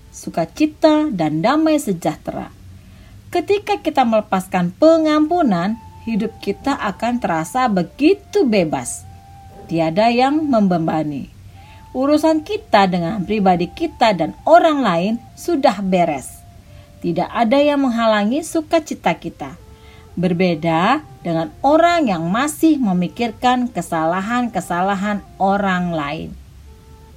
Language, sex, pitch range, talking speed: Indonesian, female, 170-280 Hz, 95 wpm